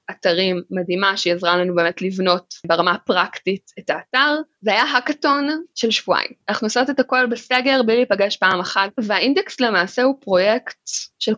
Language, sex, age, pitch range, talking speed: Hebrew, female, 20-39, 190-275 Hz, 155 wpm